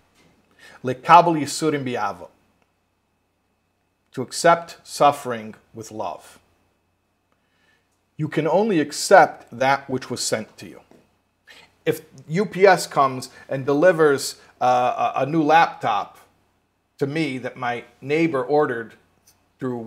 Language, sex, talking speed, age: English, male, 95 wpm, 50-69